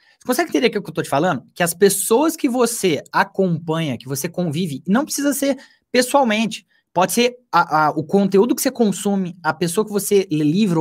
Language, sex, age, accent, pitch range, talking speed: Portuguese, male, 20-39, Brazilian, 165-240 Hz, 210 wpm